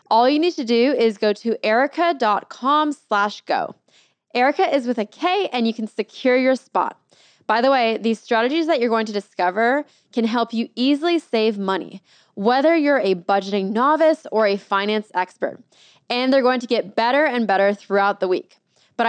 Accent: American